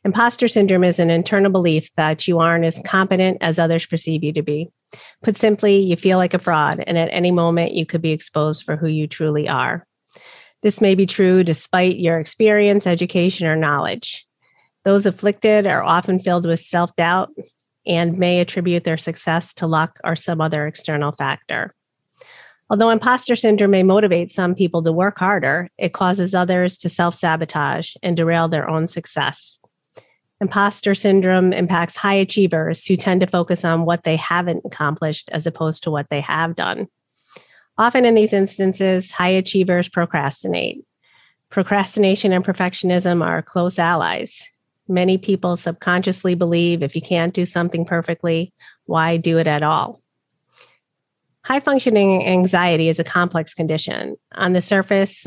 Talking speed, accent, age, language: 155 wpm, American, 40-59, English